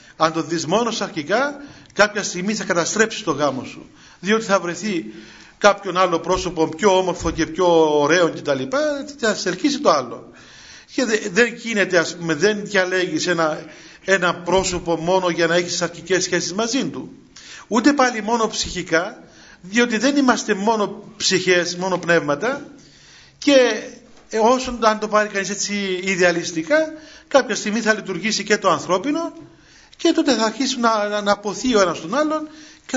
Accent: native